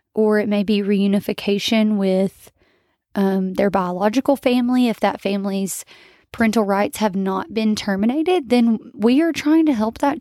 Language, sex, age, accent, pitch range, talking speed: English, female, 20-39, American, 200-235 Hz, 155 wpm